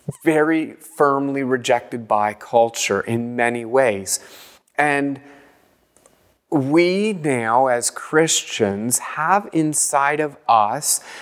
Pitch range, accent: 130-160 Hz, American